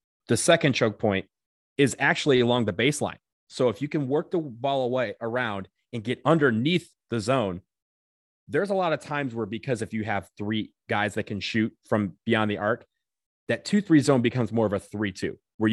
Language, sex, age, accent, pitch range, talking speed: English, male, 30-49, American, 105-140 Hz, 195 wpm